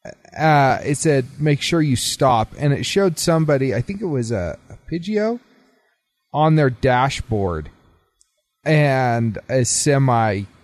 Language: English